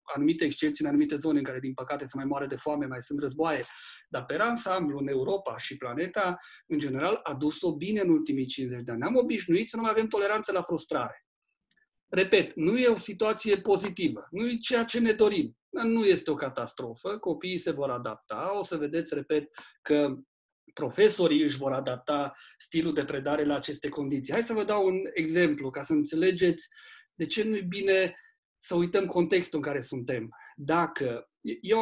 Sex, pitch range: male, 145-215 Hz